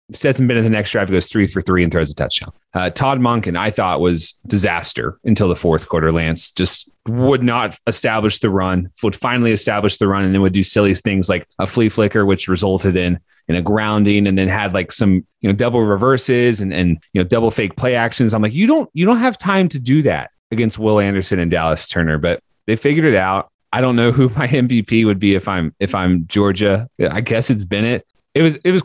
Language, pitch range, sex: English, 90-115 Hz, male